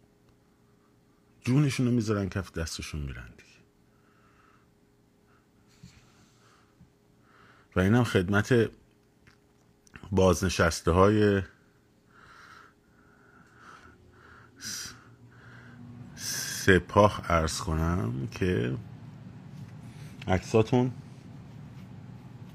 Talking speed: 45 wpm